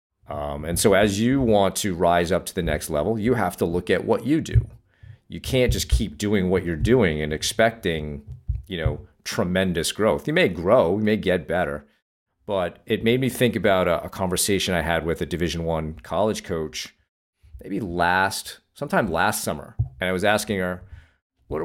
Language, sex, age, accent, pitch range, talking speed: English, male, 40-59, American, 85-110 Hz, 195 wpm